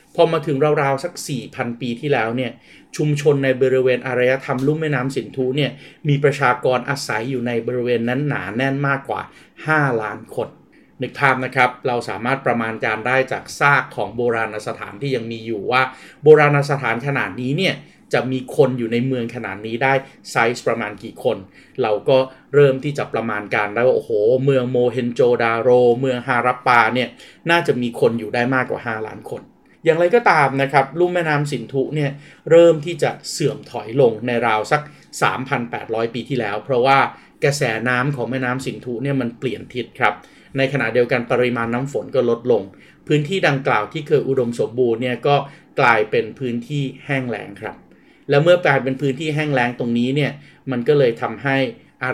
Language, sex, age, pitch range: Thai, male, 30-49, 120-145 Hz